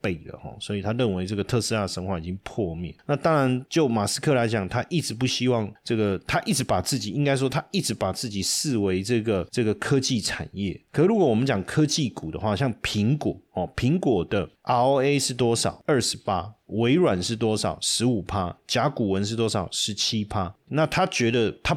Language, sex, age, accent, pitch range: Chinese, male, 30-49, native, 100-135 Hz